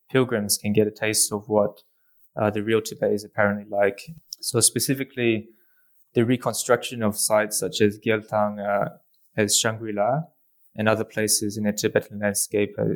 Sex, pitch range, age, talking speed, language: male, 105-115 Hz, 20-39, 155 wpm, English